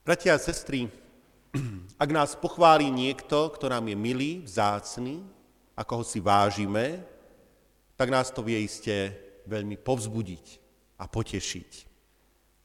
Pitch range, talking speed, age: 105-140 Hz, 120 wpm, 40-59